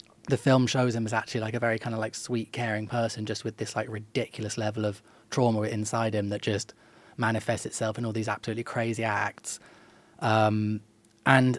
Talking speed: 190 wpm